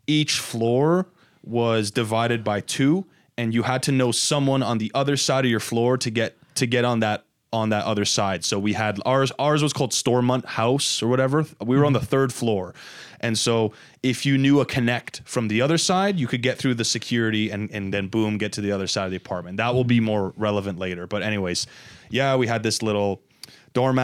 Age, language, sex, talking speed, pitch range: 20-39, English, male, 220 wpm, 110-135 Hz